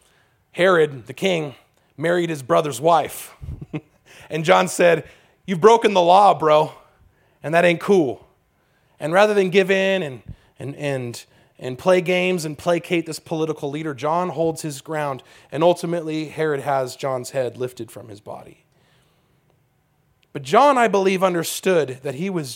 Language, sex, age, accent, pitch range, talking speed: English, male, 30-49, American, 135-175 Hz, 150 wpm